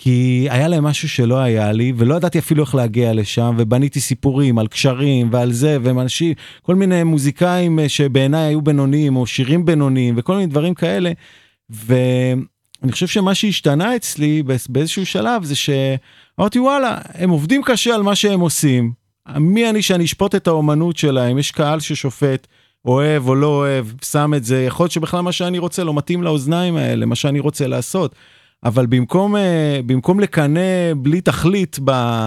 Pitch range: 130-175 Hz